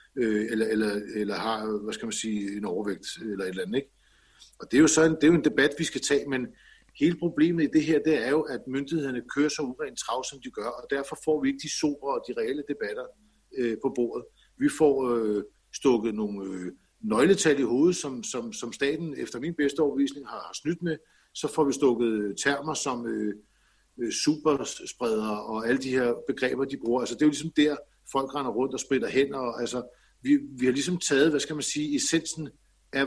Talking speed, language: 220 wpm, Danish